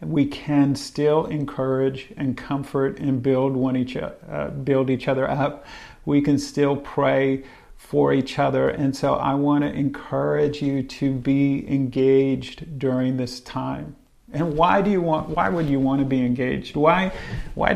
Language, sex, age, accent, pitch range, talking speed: English, male, 40-59, American, 130-150 Hz, 165 wpm